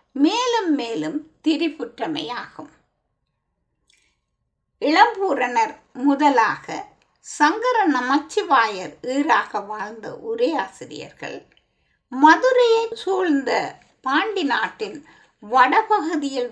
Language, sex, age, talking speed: Tamil, female, 50-69, 55 wpm